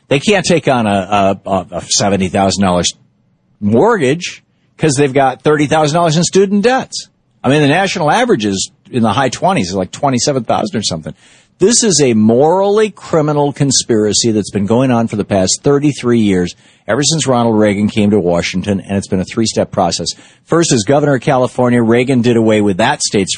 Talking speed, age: 175 wpm, 50-69